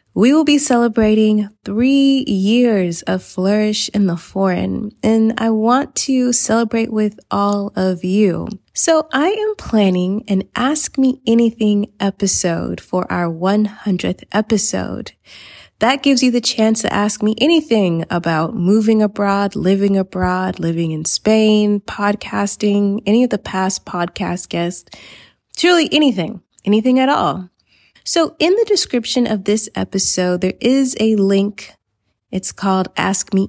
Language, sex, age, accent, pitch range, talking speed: English, female, 20-39, American, 190-235 Hz, 140 wpm